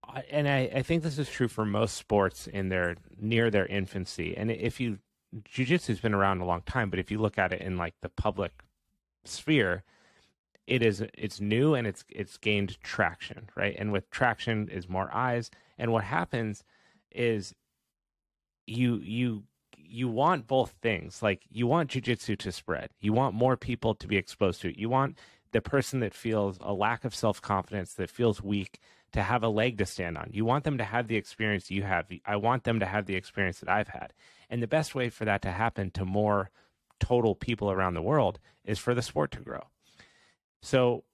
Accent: American